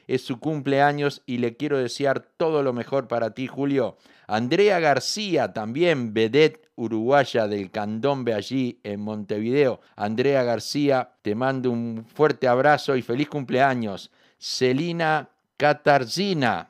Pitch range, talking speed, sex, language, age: 110-145 Hz, 125 wpm, male, Spanish, 50-69